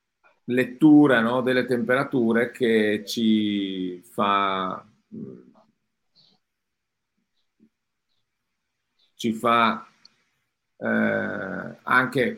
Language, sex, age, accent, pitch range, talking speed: Italian, male, 40-59, native, 110-145 Hz, 50 wpm